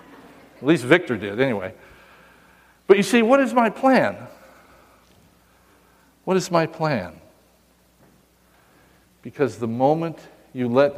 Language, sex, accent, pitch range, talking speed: English, male, American, 105-160 Hz, 115 wpm